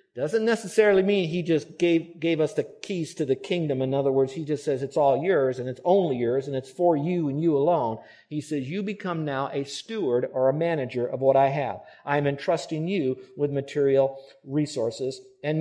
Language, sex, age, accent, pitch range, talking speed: English, male, 50-69, American, 140-195 Hz, 210 wpm